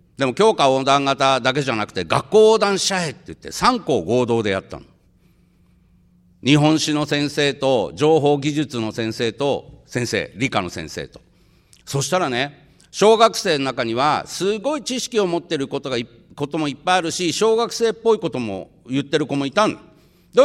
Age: 50-69